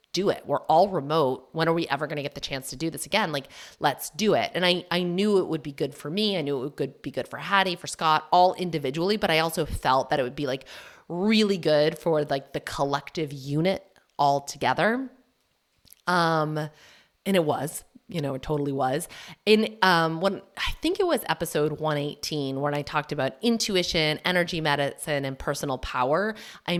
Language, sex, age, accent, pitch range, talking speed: English, female, 30-49, American, 145-180 Hz, 200 wpm